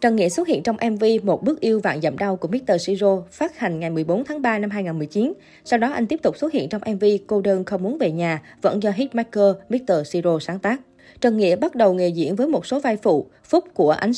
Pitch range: 180-240 Hz